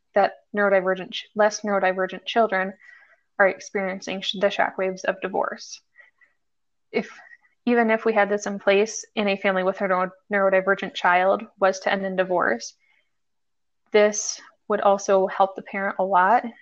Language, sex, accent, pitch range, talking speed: English, female, American, 190-225 Hz, 140 wpm